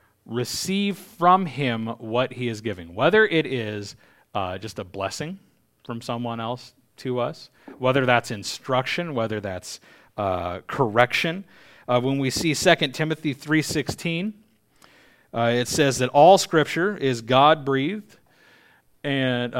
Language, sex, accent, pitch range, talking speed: English, male, American, 115-155 Hz, 125 wpm